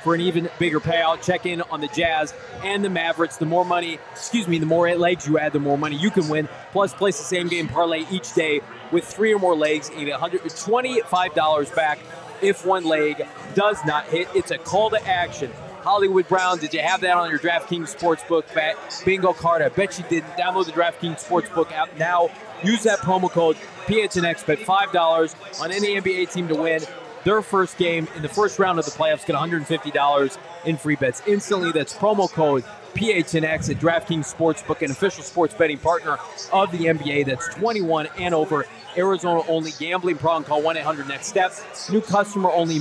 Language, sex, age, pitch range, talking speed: English, male, 20-39, 160-190 Hz, 185 wpm